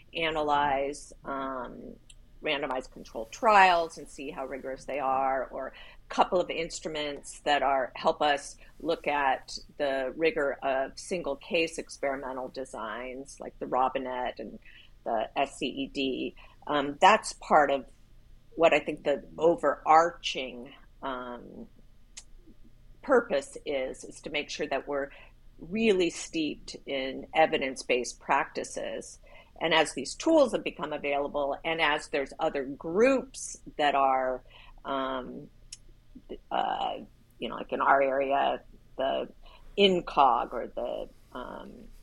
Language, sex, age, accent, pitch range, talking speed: English, female, 40-59, American, 135-160 Hz, 120 wpm